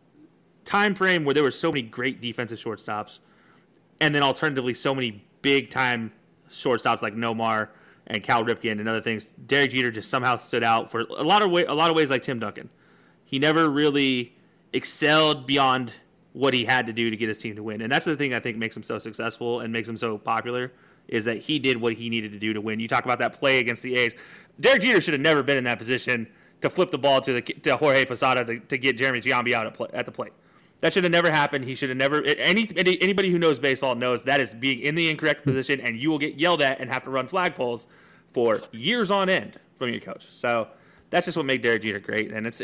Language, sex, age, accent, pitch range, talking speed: English, male, 30-49, American, 115-145 Hz, 245 wpm